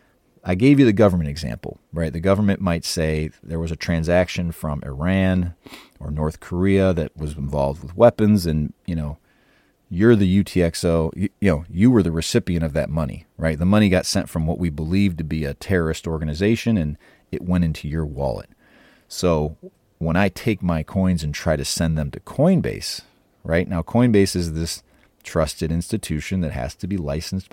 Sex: male